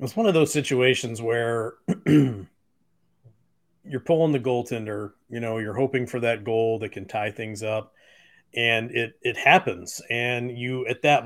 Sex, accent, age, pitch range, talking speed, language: male, American, 40-59, 115-145 Hz, 160 wpm, English